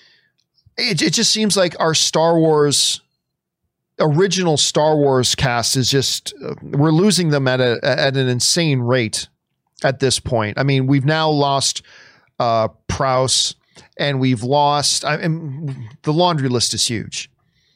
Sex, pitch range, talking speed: male, 130-185 Hz, 135 wpm